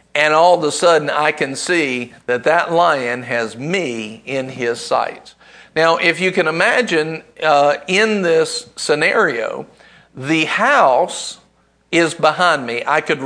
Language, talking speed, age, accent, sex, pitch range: English, 145 wpm, 50-69, American, male, 135-185 Hz